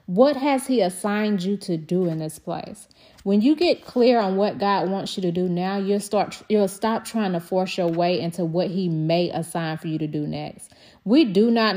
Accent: American